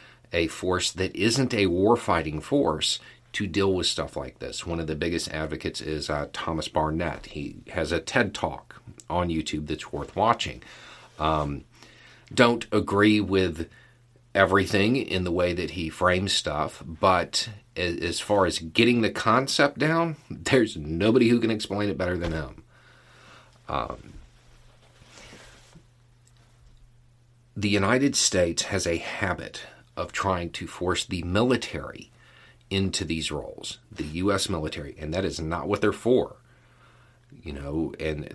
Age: 40-59